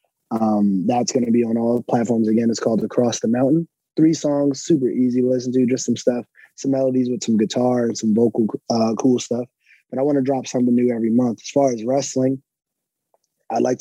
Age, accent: 20-39, American